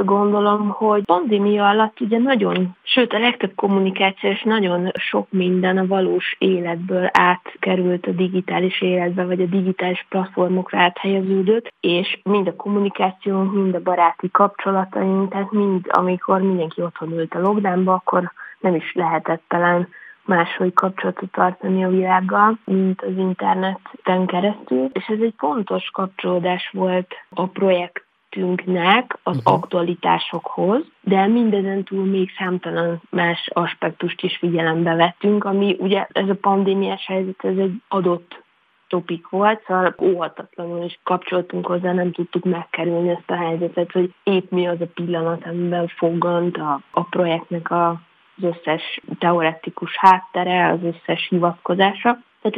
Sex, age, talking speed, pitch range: female, 20-39, 135 wpm, 175-195 Hz